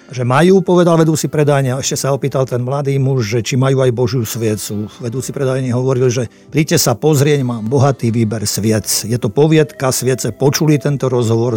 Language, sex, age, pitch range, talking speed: Slovak, male, 50-69, 120-145 Hz, 185 wpm